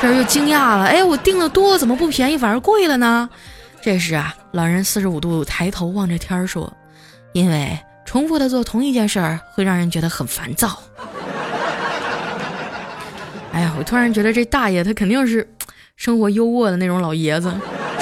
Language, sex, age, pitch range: Chinese, female, 20-39, 175-240 Hz